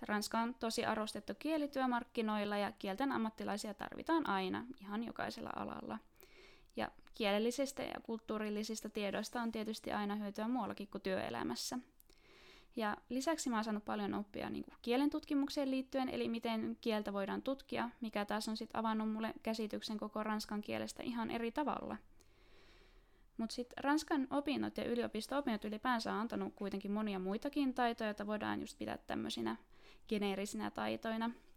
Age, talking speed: 20-39, 145 wpm